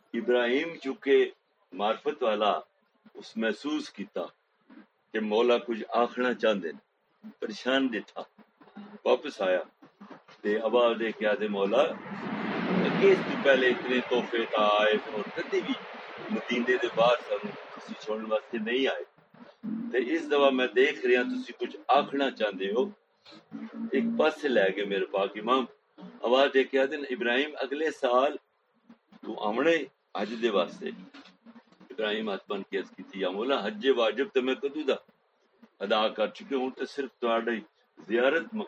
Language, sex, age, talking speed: Urdu, male, 60-79, 35 wpm